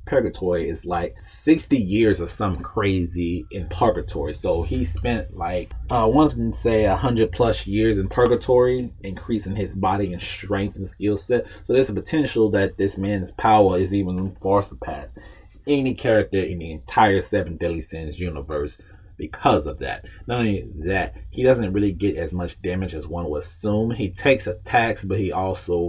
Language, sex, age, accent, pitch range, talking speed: English, male, 30-49, American, 90-105 Hz, 175 wpm